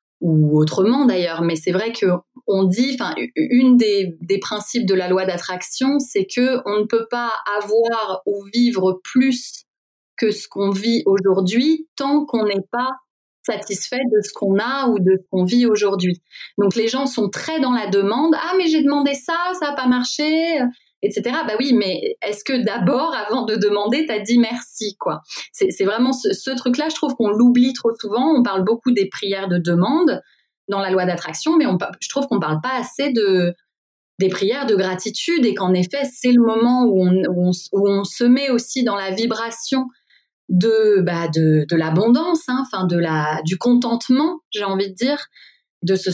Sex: female